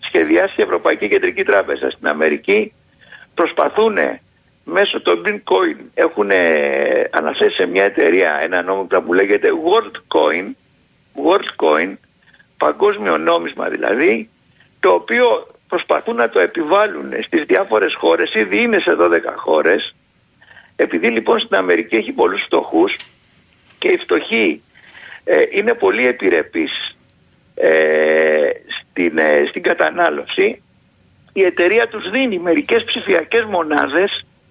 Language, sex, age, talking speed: Greek, male, 60-79, 110 wpm